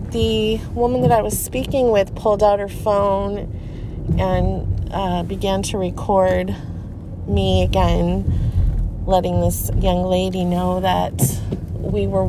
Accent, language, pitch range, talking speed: American, English, 90-130 Hz, 125 wpm